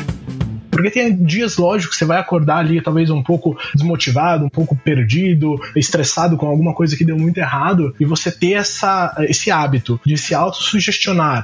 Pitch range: 135-165 Hz